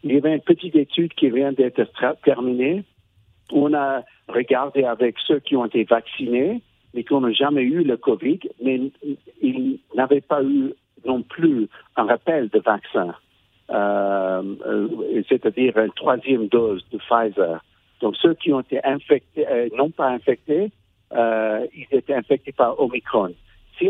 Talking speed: 155 wpm